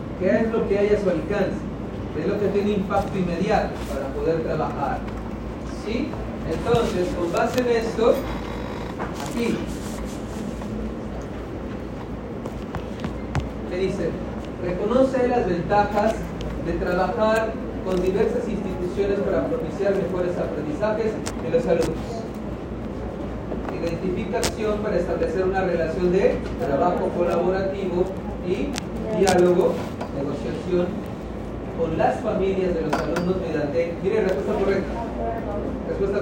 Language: Spanish